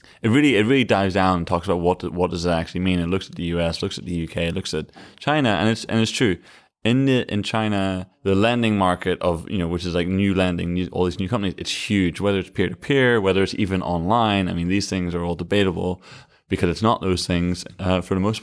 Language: English